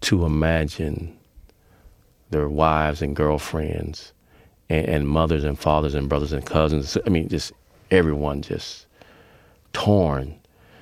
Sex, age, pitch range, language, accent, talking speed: male, 40-59, 75-95 Hz, English, American, 105 wpm